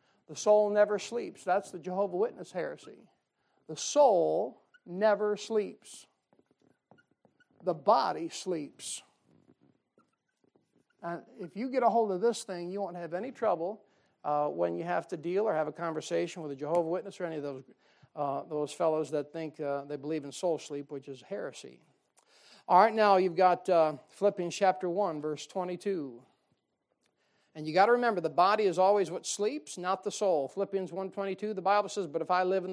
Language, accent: English, American